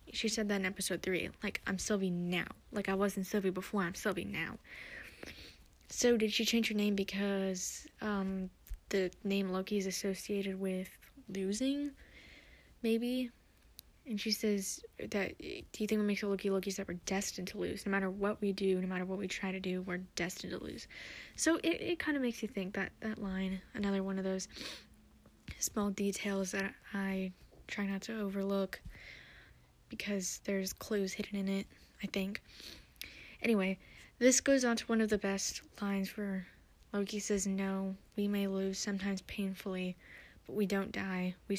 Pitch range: 190-210 Hz